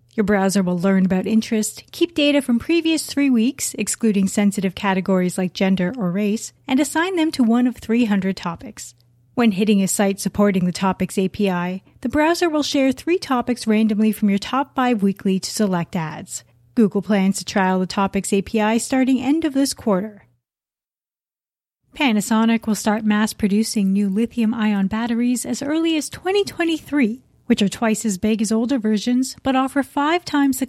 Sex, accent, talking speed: female, American, 170 wpm